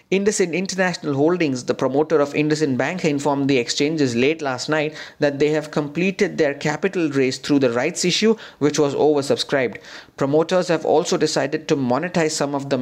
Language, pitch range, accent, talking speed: English, 140-165 Hz, Indian, 175 wpm